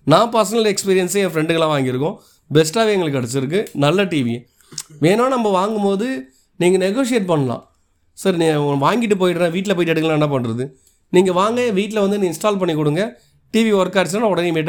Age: 30-49